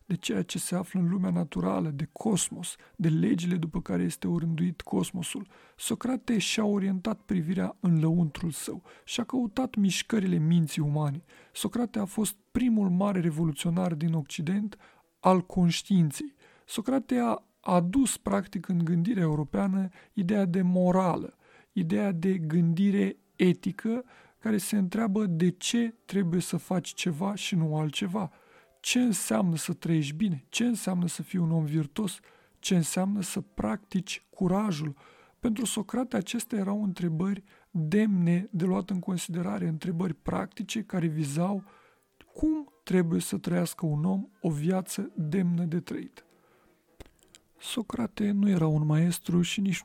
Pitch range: 170-210 Hz